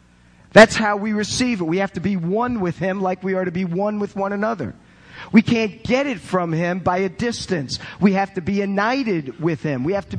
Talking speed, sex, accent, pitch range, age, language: 235 wpm, male, American, 135-195 Hz, 50-69, English